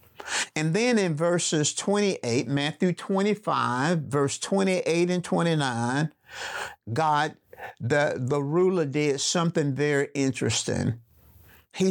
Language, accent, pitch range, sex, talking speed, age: English, American, 130-185 Hz, male, 100 wpm, 50-69